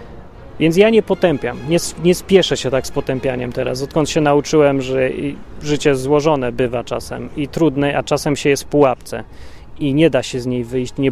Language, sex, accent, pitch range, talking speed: Polish, male, native, 120-160 Hz, 195 wpm